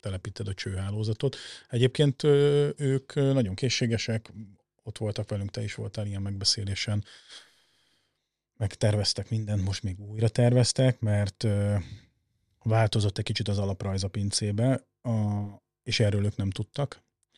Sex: male